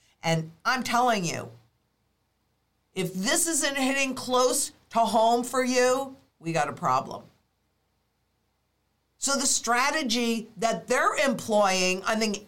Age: 50-69